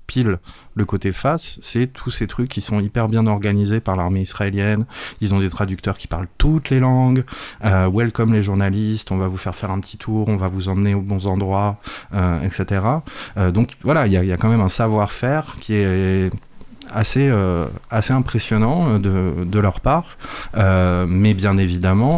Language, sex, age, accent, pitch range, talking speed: French, male, 30-49, French, 90-110 Hz, 190 wpm